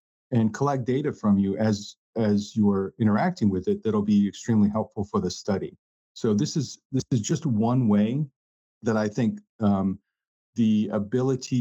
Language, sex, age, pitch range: English, male, 40-59, 105-125 Hz